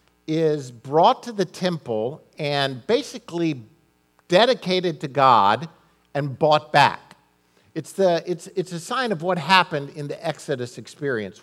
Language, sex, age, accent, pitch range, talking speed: English, male, 50-69, American, 125-165 Hz, 135 wpm